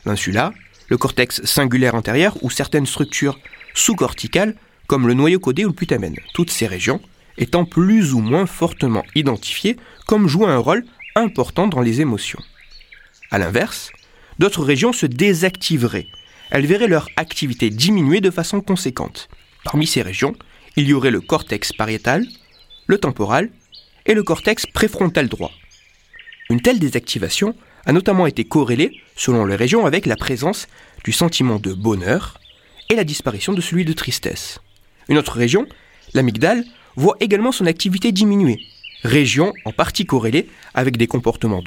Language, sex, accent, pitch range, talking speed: French, male, French, 120-190 Hz, 150 wpm